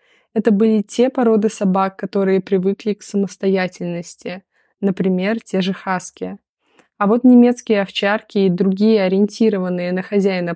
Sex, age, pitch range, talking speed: female, 20-39, 185-215 Hz, 125 wpm